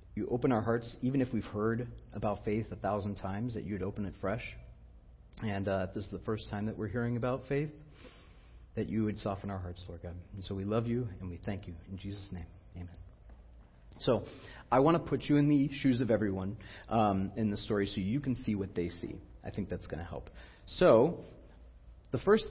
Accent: American